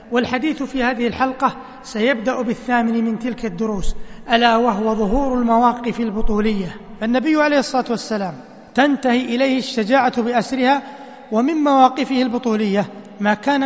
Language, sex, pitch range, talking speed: Arabic, male, 220-260 Hz, 120 wpm